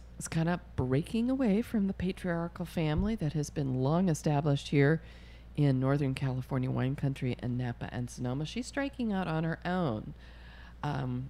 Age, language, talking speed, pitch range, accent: 40-59, English, 165 wpm, 125-175 Hz, American